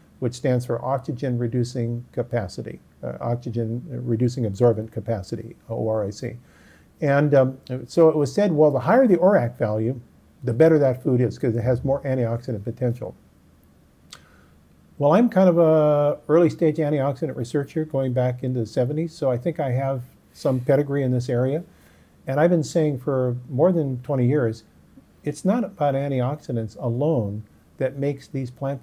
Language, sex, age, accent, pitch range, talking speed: English, male, 50-69, American, 120-150 Hz, 155 wpm